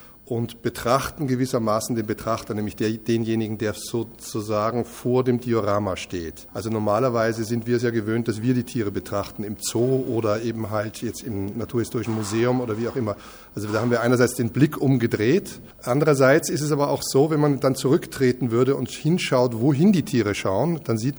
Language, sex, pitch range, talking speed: German, male, 115-135 Hz, 185 wpm